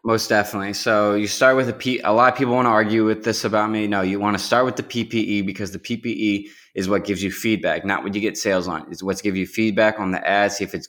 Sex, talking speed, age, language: male, 285 wpm, 20-39, English